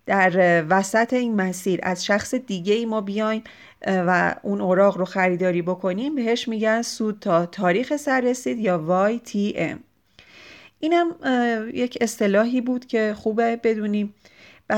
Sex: female